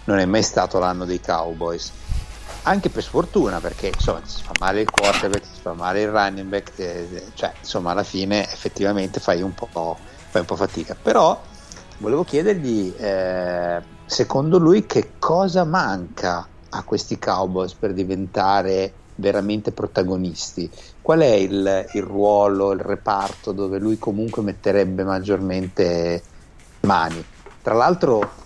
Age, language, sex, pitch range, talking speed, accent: 60-79, Italian, male, 90-105 Hz, 140 wpm, native